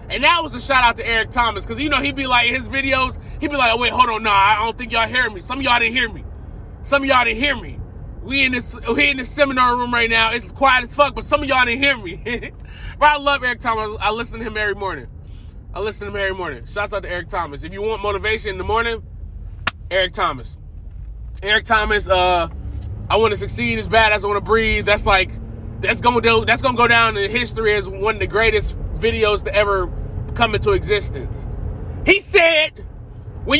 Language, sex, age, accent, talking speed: English, male, 20-39, American, 235 wpm